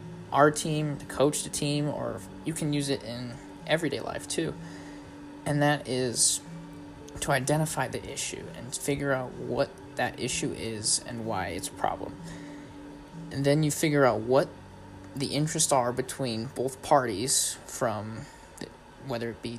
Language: English